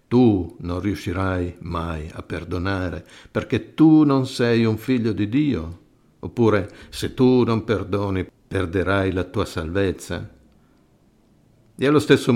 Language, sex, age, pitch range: Italian, male, 60-79, 95-125 Hz